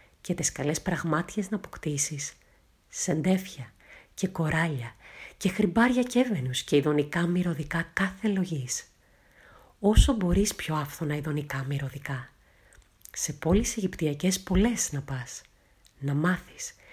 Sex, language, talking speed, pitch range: female, Italian, 110 wpm, 140-180 Hz